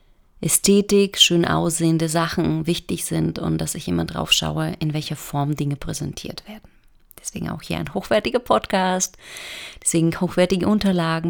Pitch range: 155-185 Hz